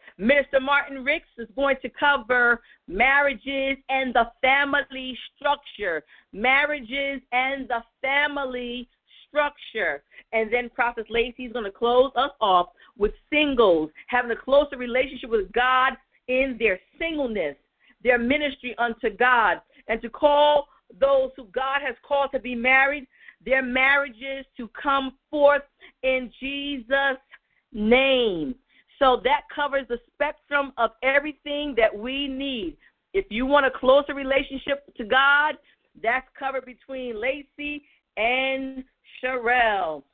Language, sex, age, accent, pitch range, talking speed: English, female, 50-69, American, 240-280 Hz, 125 wpm